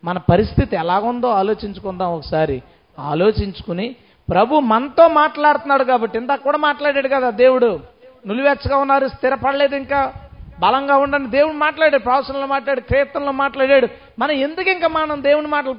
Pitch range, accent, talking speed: 200-285 Hz, native, 125 wpm